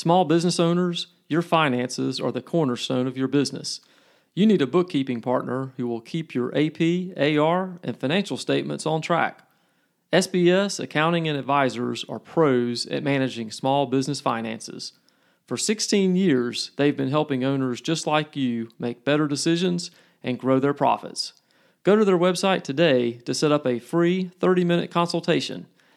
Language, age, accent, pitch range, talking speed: English, 40-59, American, 130-175 Hz, 155 wpm